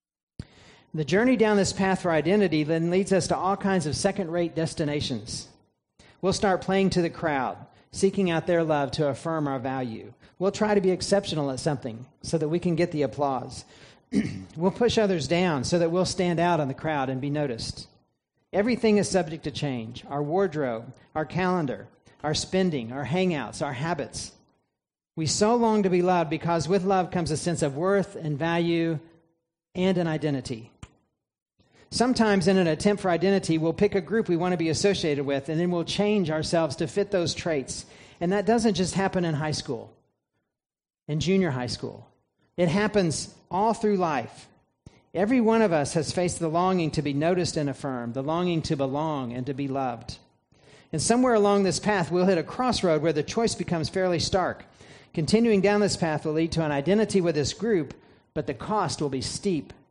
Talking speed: 190 wpm